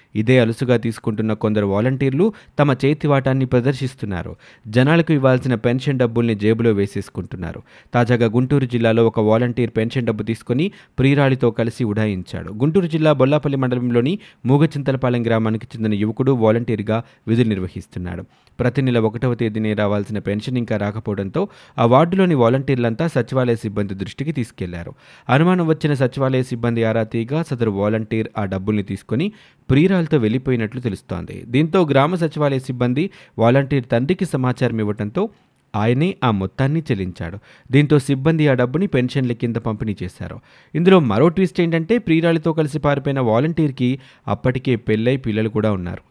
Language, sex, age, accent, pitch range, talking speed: Telugu, male, 20-39, native, 110-140 Hz, 130 wpm